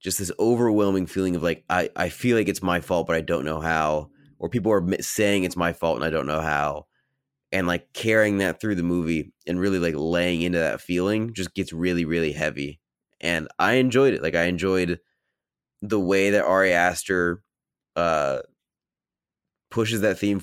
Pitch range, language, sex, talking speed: 85-100 Hz, English, male, 190 wpm